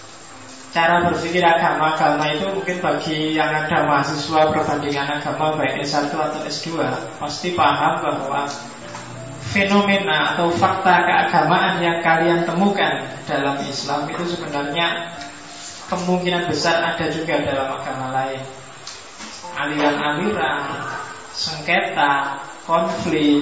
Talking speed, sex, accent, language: 100 wpm, male, native, Indonesian